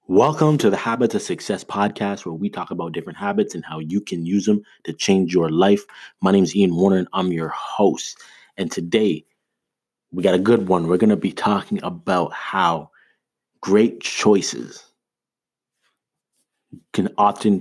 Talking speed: 170 wpm